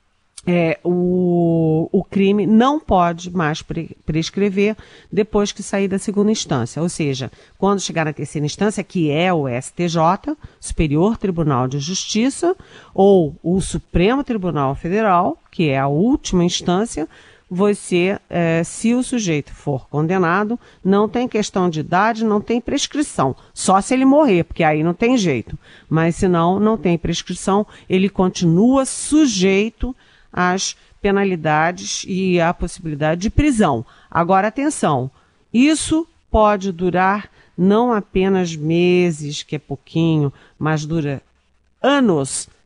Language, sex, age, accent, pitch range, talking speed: Portuguese, female, 40-59, Brazilian, 160-210 Hz, 130 wpm